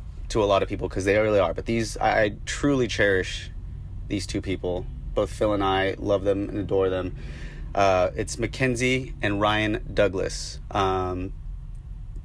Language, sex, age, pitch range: English, male, 30-49, 90-105 Hz